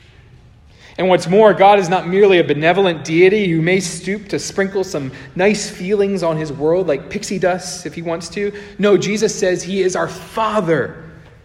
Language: English